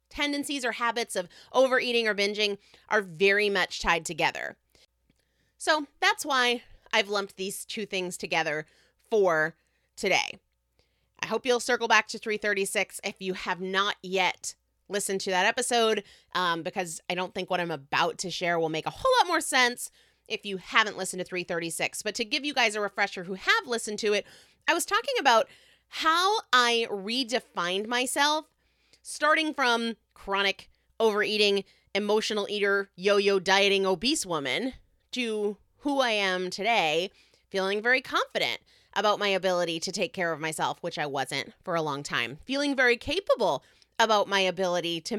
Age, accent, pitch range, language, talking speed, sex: 30-49, American, 185-250 Hz, English, 160 wpm, female